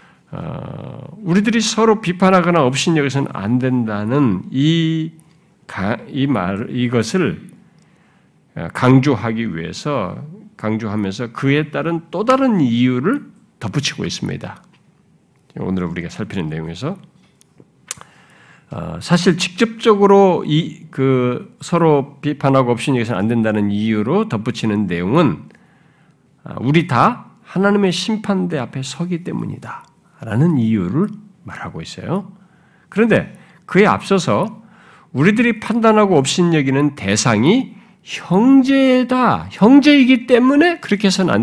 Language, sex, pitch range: Korean, male, 130-200 Hz